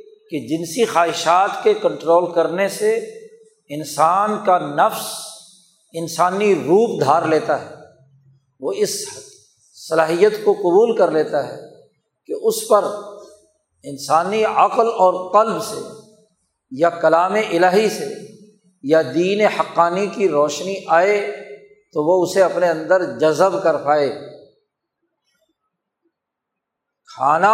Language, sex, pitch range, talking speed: Urdu, male, 160-220 Hz, 110 wpm